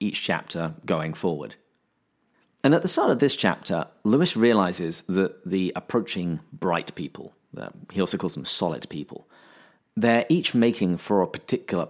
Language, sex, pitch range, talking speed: English, male, 90-105 Hz, 150 wpm